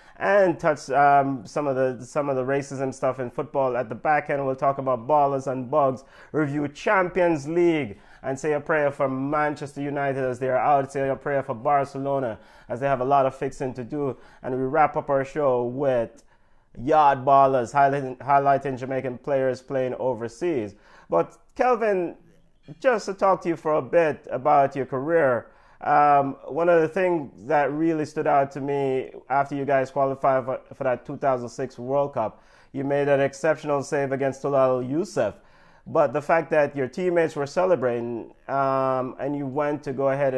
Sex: male